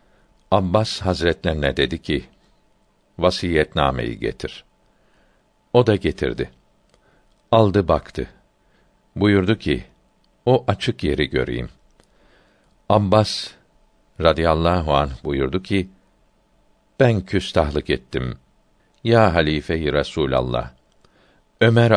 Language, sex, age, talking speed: Turkish, male, 60-79, 80 wpm